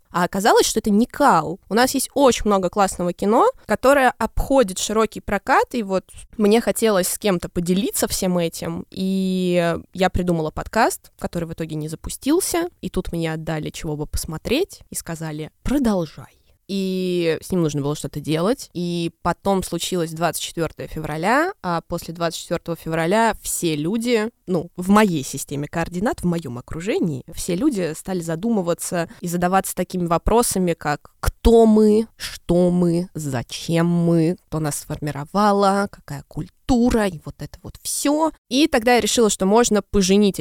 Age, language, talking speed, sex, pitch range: 20-39, Russian, 155 wpm, female, 165-220 Hz